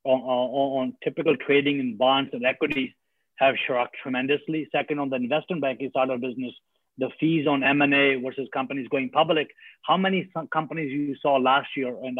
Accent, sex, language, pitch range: Indian, male, English, 130-160 Hz